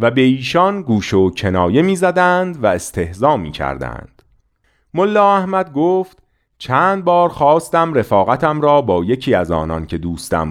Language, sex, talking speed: Persian, male, 145 wpm